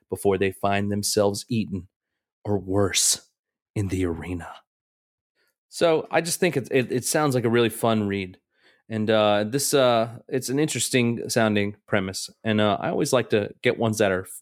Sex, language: male, English